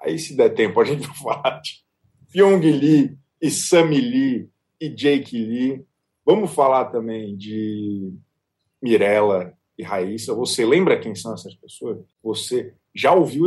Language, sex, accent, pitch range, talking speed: Portuguese, male, Brazilian, 105-170 Hz, 145 wpm